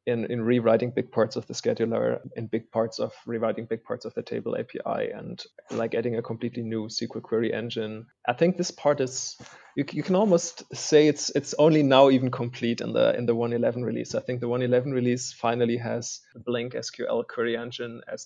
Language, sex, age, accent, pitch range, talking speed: English, male, 20-39, German, 115-130 Hz, 195 wpm